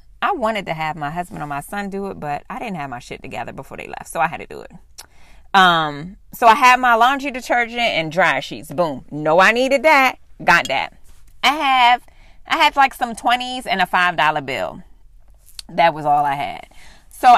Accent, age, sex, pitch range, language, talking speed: American, 30-49, female, 170-265 Hz, English, 210 wpm